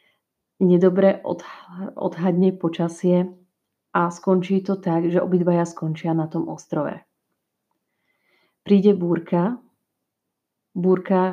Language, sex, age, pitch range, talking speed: Slovak, female, 30-49, 160-180 Hz, 85 wpm